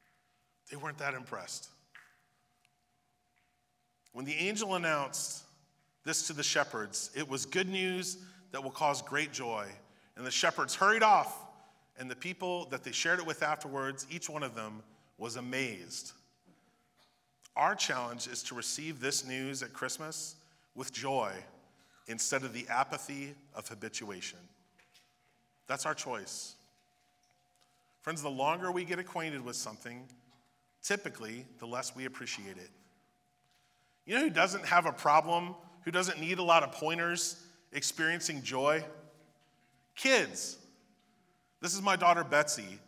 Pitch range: 125-170 Hz